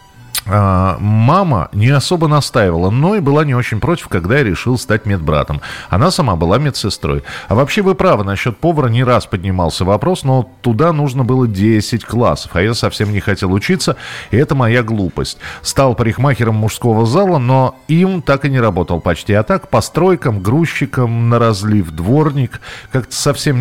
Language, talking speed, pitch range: Russian, 165 wpm, 95-135 Hz